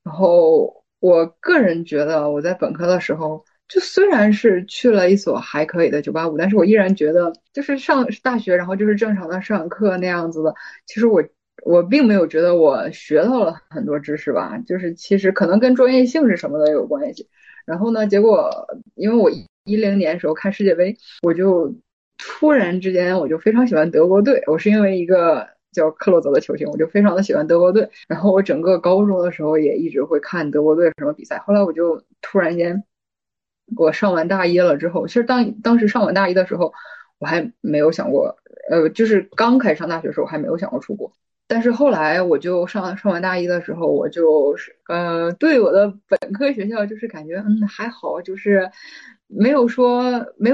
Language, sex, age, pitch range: Chinese, female, 20-39, 175-235 Hz